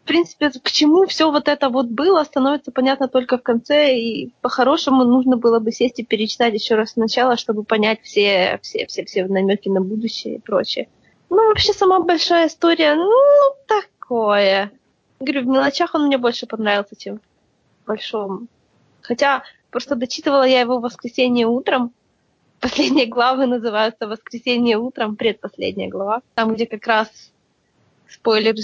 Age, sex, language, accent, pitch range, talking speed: 20-39, female, Russian, native, 225-285 Hz, 150 wpm